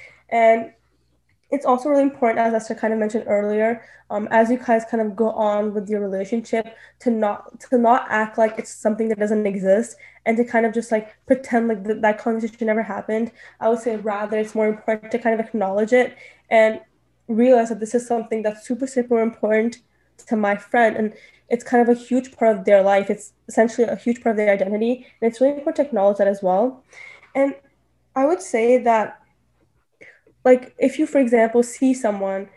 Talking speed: 200 wpm